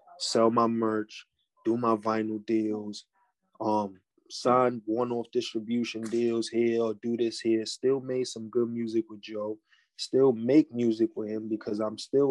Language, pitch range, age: English, 110-120 Hz, 20-39